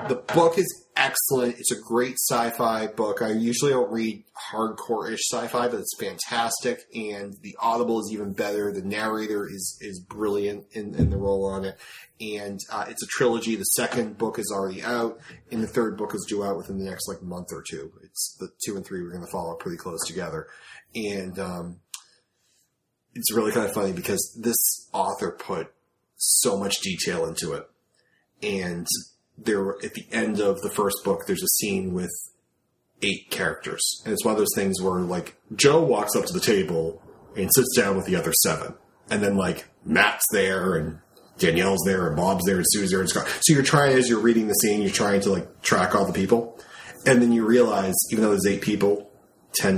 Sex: male